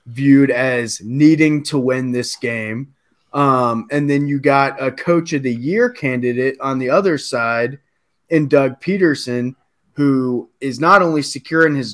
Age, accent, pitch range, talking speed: 20-39, American, 120-140 Hz, 160 wpm